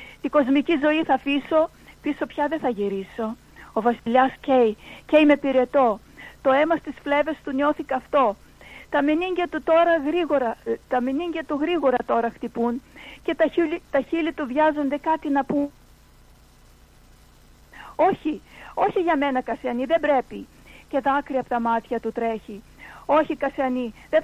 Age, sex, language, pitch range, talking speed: 50-69, female, Greek, 235-300 Hz, 150 wpm